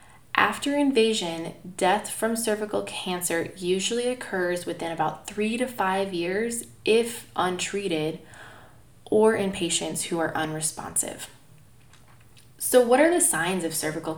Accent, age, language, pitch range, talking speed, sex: American, 20-39, English, 155-210 Hz, 125 wpm, female